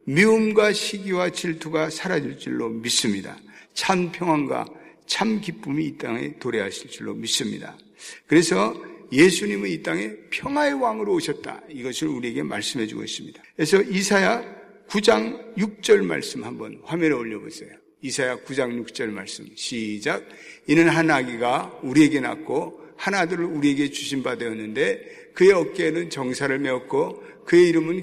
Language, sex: Korean, male